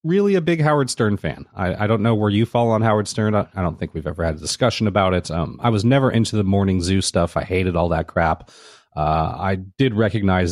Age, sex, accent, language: 30-49, male, American, English